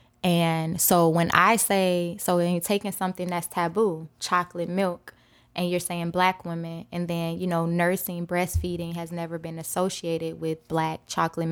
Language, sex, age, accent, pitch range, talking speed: English, female, 20-39, American, 165-185 Hz, 165 wpm